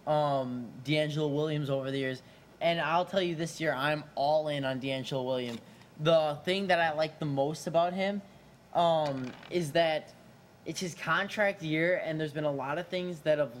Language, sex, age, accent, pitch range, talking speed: English, male, 10-29, American, 140-175 Hz, 190 wpm